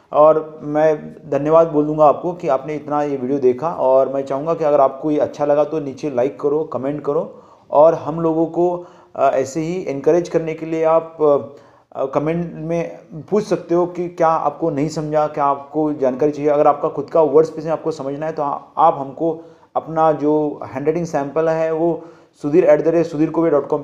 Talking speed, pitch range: 185 wpm, 145-165 Hz